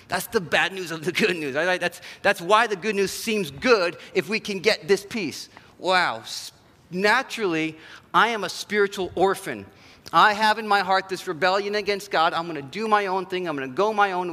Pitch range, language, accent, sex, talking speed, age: 145-195 Hz, English, American, male, 215 wpm, 40-59